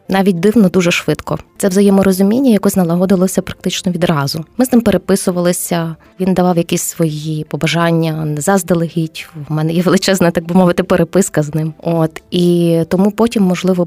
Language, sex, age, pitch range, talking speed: Ukrainian, female, 20-39, 165-190 Hz, 155 wpm